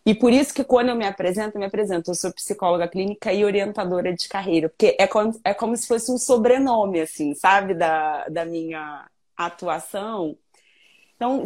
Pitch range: 170-225 Hz